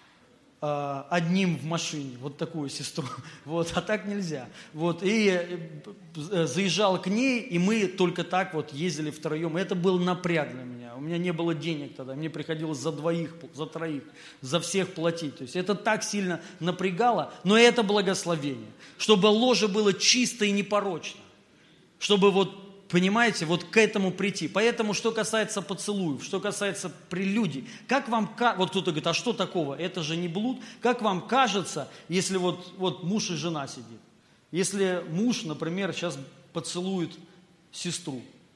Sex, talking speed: male, 155 wpm